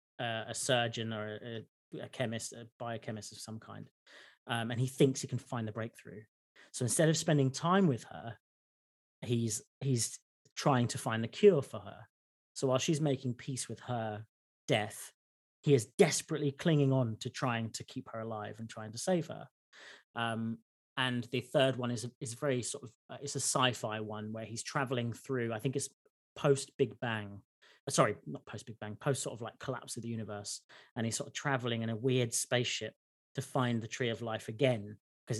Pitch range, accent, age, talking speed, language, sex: 115-140 Hz, British, 30-49, 195 wpm, English, male